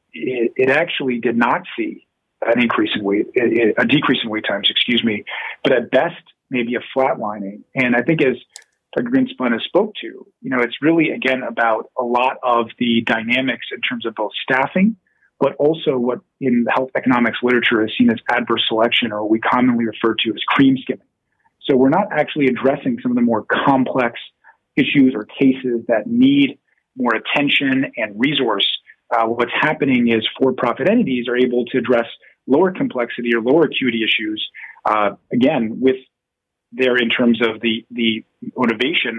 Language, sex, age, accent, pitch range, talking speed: English, male, 30-49, American, 115-140 Hz, 175 wpm